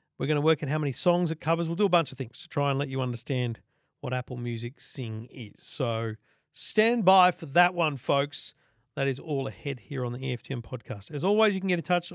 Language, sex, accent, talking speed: English, male, Australian, 245 wpm